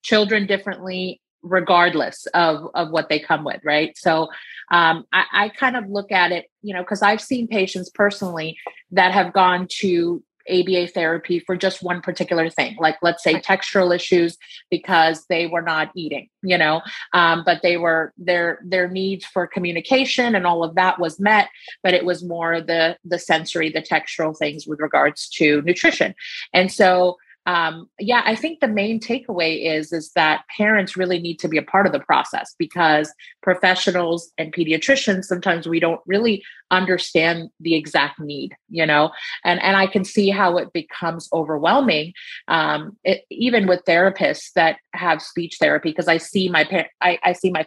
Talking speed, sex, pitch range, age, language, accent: 175 wpm, female, 165-190 Hz, 30-49, English, American